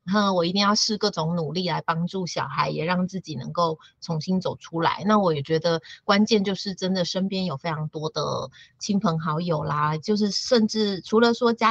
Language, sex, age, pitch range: Chinese, female, 30-49, 160-200 Hz